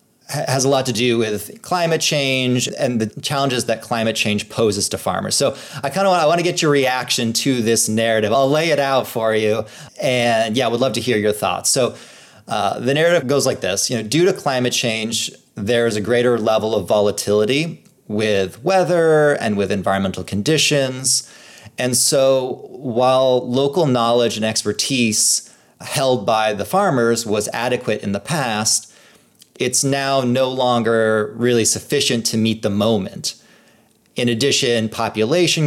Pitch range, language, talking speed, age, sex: 110-135 Hz, English, 165 wpm, 30-49, male